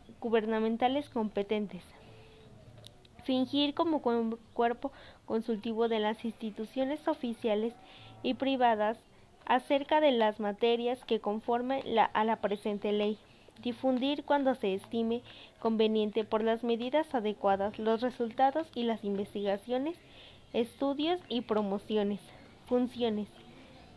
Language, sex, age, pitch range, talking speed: Spanish, female, 20-39, 215-250 Hz, 100 wpm